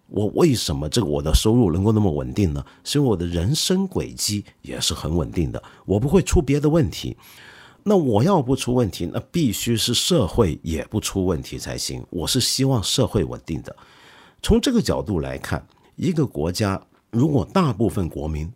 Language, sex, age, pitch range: Chinese, male, 50-69, 85-125 Hz